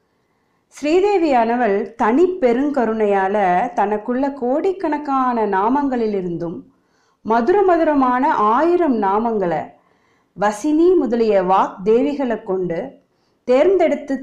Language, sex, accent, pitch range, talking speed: Tamil, female, native, 210-295 Hz, 65 wpm